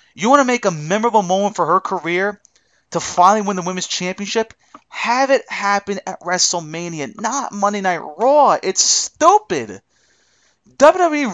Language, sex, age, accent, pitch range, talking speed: English, male, 30-49, American, 190-285 Hz, 150 wpm